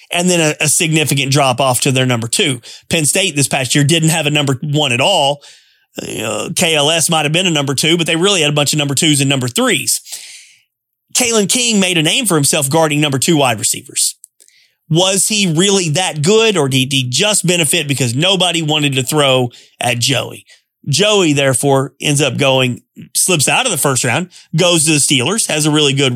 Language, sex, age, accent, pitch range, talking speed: English, male, 30-49, American, 140-185 Hz, 210 wpm